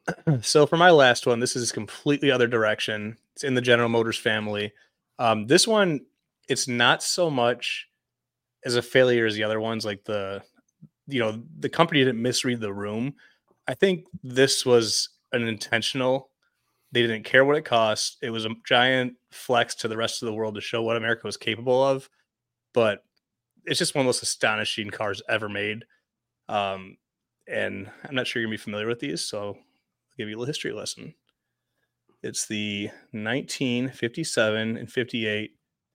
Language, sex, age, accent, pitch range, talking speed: English, male, 30-49, American, 105-125 Hz, 175 wpm